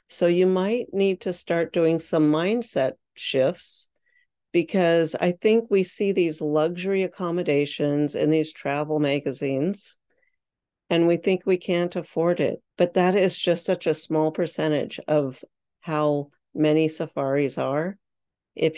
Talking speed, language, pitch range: 135 wpm, English, 150-185 Hz